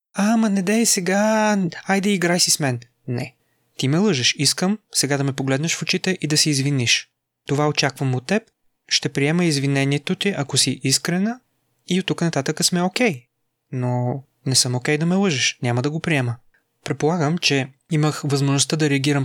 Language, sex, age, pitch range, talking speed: Bulgarian, male, 20-39, 135-160 Hz, 185 wpm